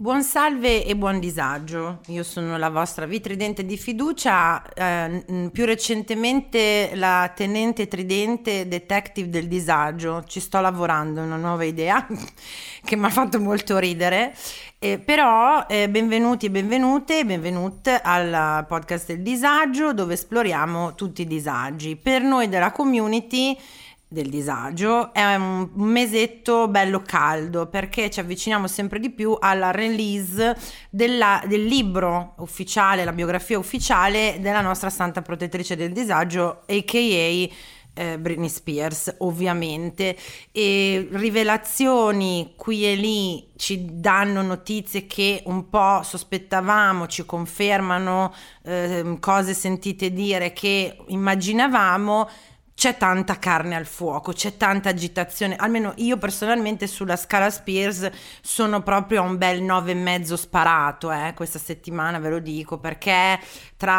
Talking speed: 130 wpm